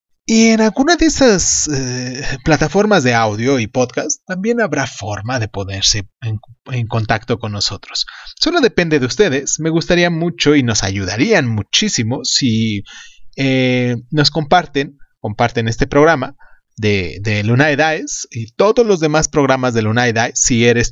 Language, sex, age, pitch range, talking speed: Spanish, male, 30-49, 110-155 Hz, 160 wpm